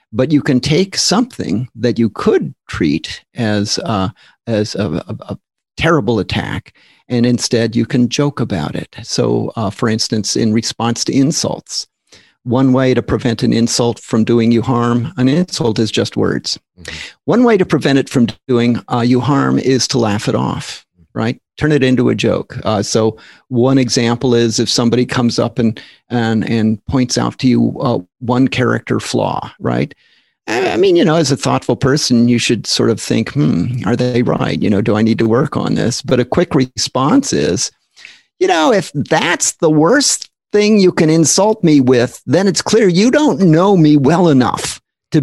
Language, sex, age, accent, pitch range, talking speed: English, male, 50-69, American, 115-155 Hz, 185 wpm